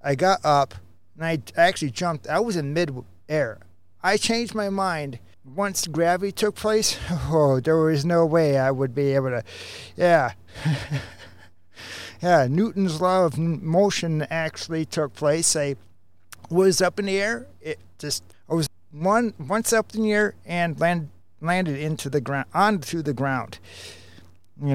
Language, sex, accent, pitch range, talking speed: English, male, American, 120-170 Hz, 160 wpm